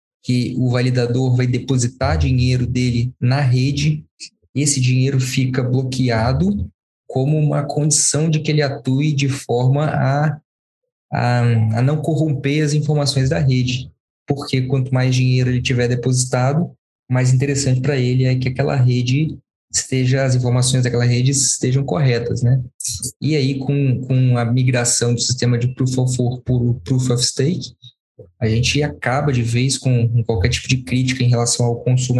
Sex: male